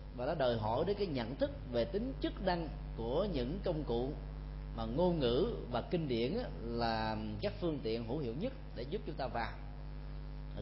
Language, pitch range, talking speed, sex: Vietnamese, 115-160 Hz, 200 wpm, male